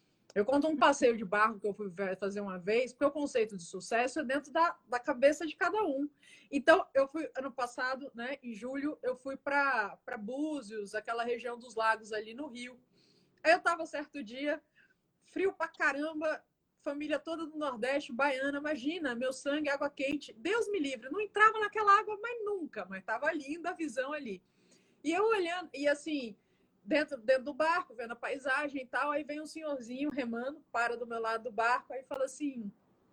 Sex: female